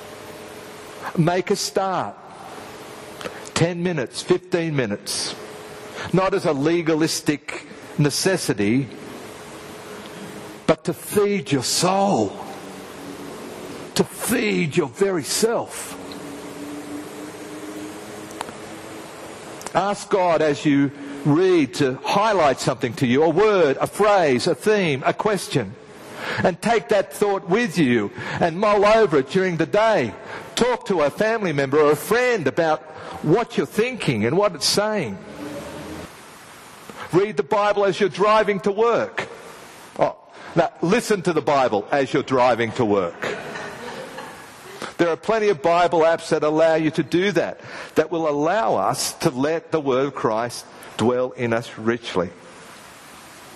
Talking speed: 125 wpm